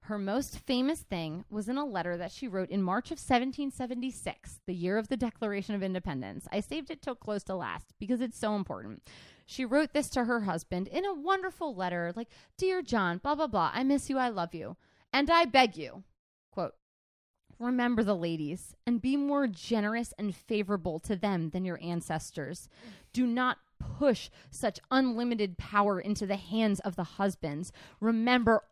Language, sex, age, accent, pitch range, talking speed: English, female, 20-39, American, 180-240 Hz, 180 wpm